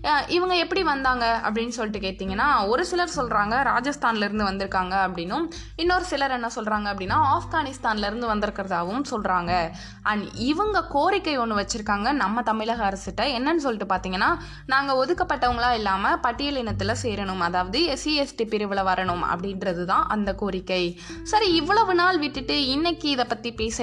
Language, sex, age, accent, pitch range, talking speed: Tamil, female, 20-39, native, 200-295 Hz, 135 wpm